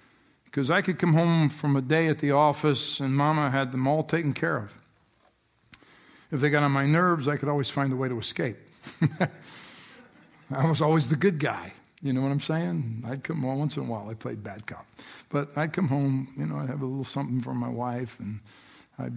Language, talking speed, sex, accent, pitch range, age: English, 220 wpm, male, American, 130-155 Hz, 50-69